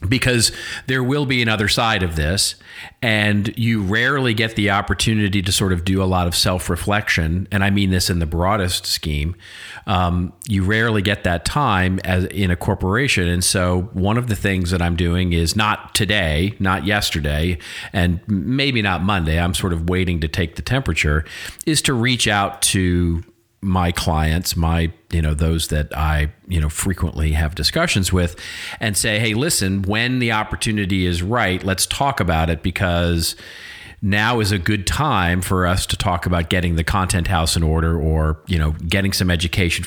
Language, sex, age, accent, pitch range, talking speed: English, male, 40-59, American, 85-105 Hz, 185 wpm